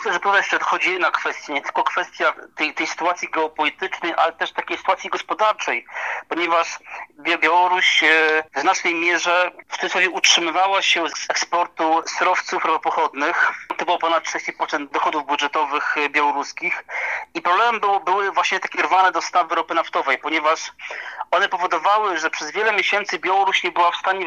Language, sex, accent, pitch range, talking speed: Polish, male, native, 160-190 Hz, 145 wpm